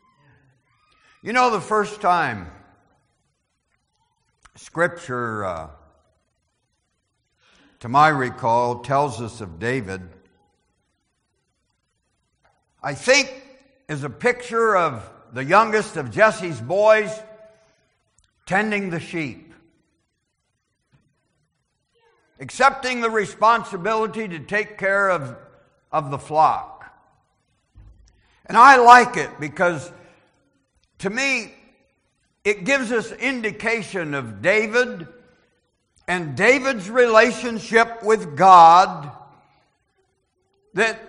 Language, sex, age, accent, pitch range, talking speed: English, male, 60-79, American, 140-225 Hz, 85 wpm